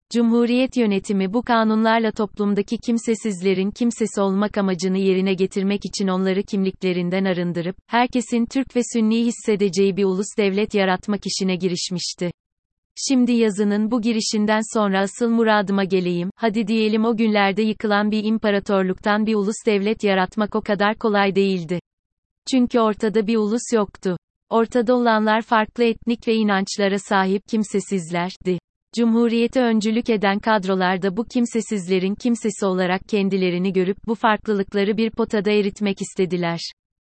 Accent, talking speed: native, 130 wpm